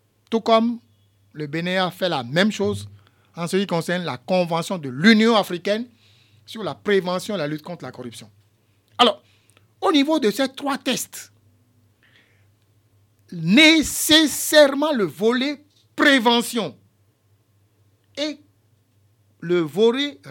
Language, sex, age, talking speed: French, male, 60-79, 120 wpm